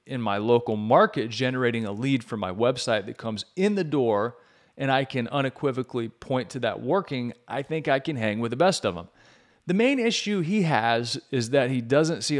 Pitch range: 115-150 Hz